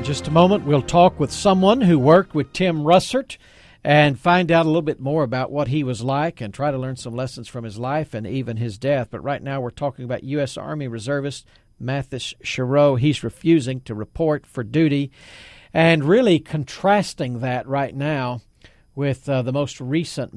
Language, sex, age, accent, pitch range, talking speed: English, male, 50-69, American, 115-140 Hz, 195 wpm